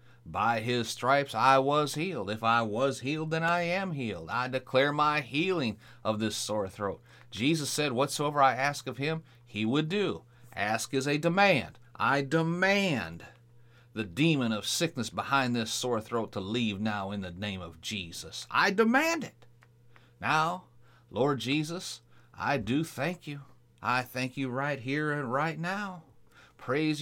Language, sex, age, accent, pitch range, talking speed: English, male, 40-59, American, 115-150 Hz, 160 wpm